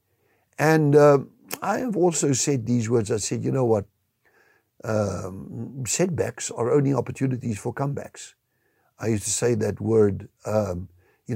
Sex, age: male, 60-79